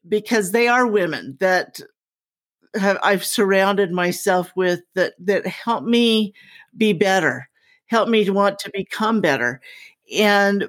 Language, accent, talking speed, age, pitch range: English, American, 135 wpm, 50-69, 190-230 Hz